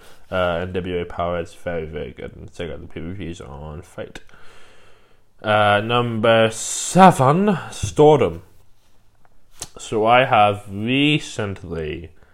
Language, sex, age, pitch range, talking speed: English, male, 20-39, 90-105 Hz, 110 wpm